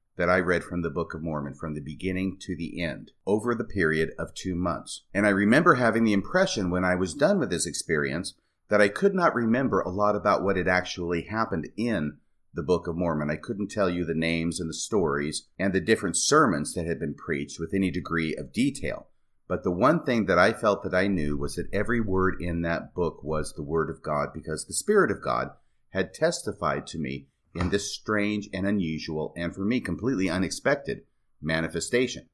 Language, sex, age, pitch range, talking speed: English, male, 40-59, 85-110 Hz, 210 wpm